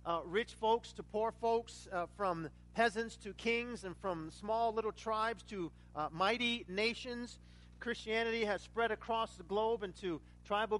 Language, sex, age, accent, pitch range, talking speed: English, male, 40-59, American, 195-240 Hz, 155 wpm